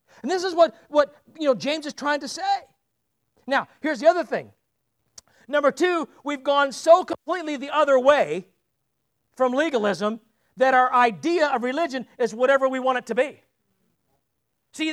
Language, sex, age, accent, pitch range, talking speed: English, male, 50-69, American, 255-320 Hz, 165 wpm